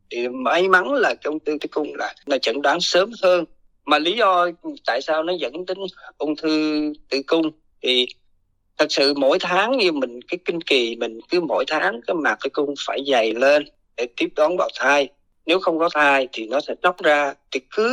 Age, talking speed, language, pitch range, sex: 20-39, 210 wpm, Vietnamese, 140-185 Hz, male